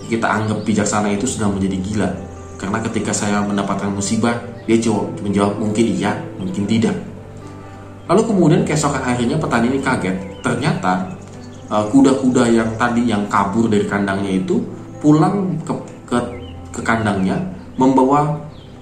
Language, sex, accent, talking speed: Indonesian, male, native, 130 wpm